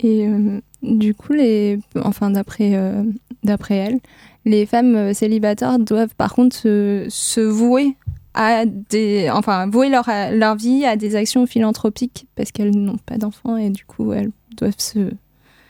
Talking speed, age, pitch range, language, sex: 155 wpm, 20-39, 210-250 Hz, French, female